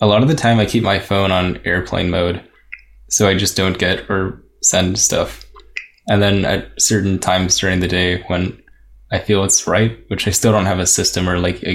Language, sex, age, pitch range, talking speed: Finnish, male, 10-29, 90-105 Hz, 220 wpm